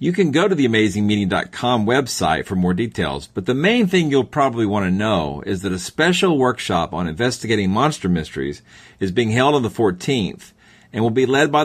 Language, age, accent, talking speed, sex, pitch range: English, 50-69, American, 200 wpm, male, 90-120 Hz